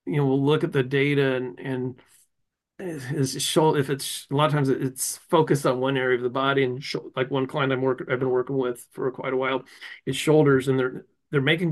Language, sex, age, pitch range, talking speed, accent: English, male, 40-59, 135-165 Hz, 230 wpm, American